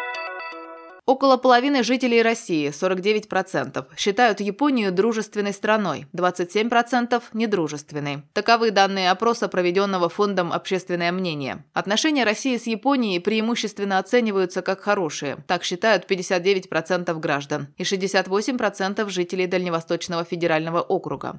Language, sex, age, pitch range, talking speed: Russian, female, 20-39, 170-220 Hz, 105 wpm